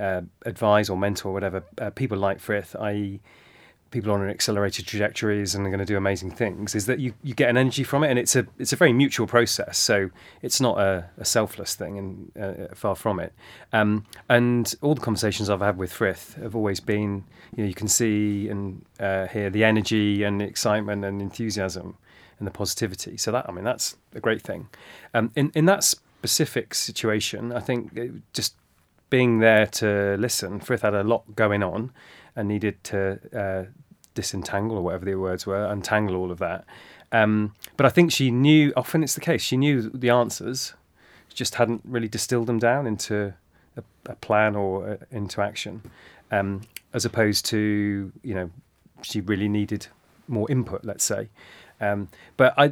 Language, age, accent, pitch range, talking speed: English, 30-49, British, 100-120 Hz, 190 wpm